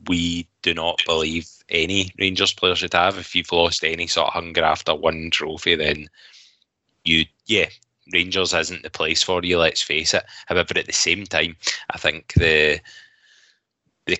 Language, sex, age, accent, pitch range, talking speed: English, male, 10-29, British, 80-100 Hz, 170 wpm